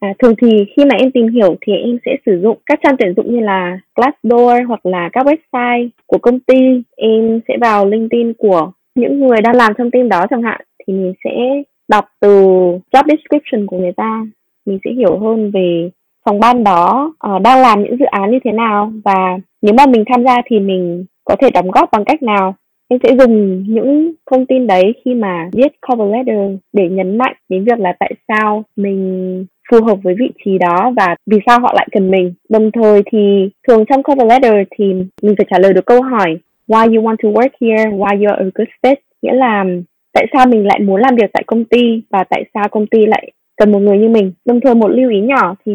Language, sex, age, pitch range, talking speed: Vietnamese, female, 20-39, 195-250 Hz, 225 wpm